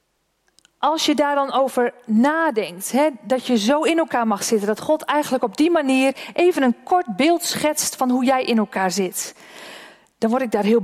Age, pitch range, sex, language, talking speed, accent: 40-59, 215-275 Hz, female, Dutch, 200 wpm, Dutch